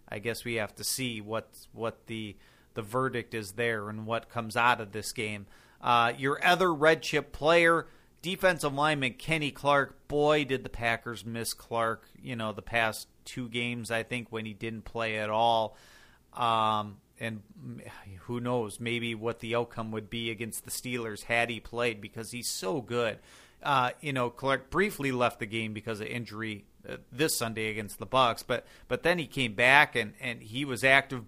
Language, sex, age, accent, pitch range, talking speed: English, male, 40-59, American, 115-135 Hz, 185 wpm